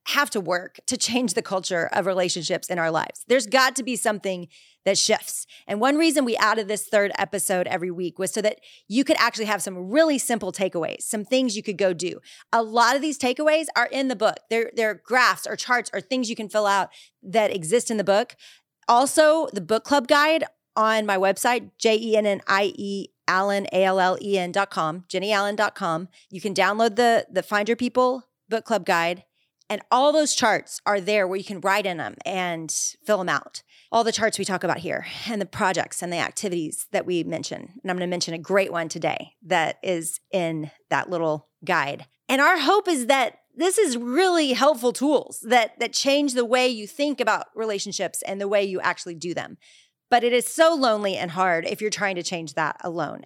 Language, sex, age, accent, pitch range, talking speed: English, female, 30-49, American, 185-250 Hz, 200 wpm